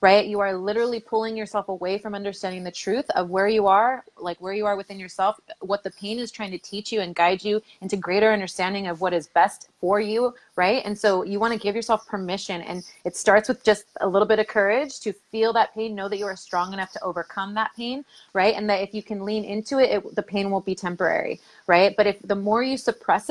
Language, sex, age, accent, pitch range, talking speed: English, female, 30-49, American, 195-225 Hz, 245 wpm